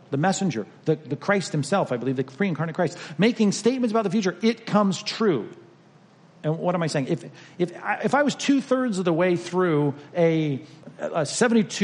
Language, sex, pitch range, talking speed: English, male, 150-205 Hz, 190 wpm